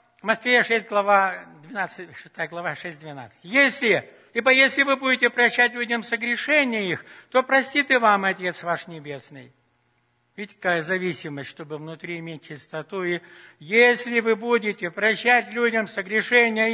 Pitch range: 165-230 Hz